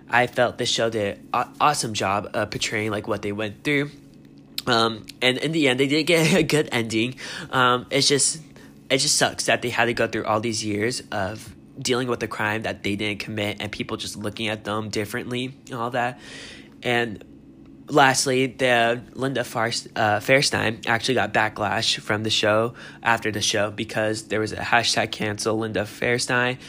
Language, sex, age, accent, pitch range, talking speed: English, male, 10-29, American, 105-125 Hz, 185 wpm